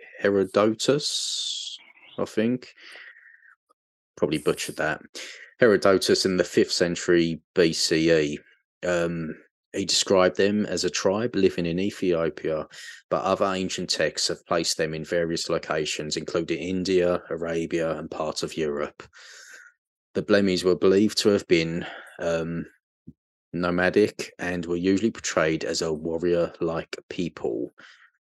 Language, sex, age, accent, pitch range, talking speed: English, male, 30-49, British, 85-95 Hz, 120 wpm